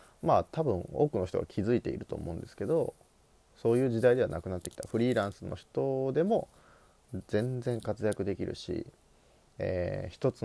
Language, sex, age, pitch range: Japanese, male, 30-49, 90-125 Hz